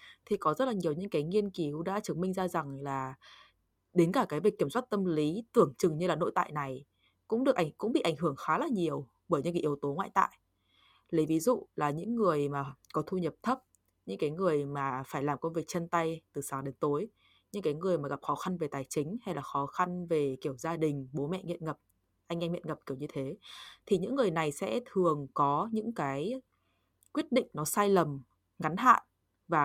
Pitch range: 145-205 Hz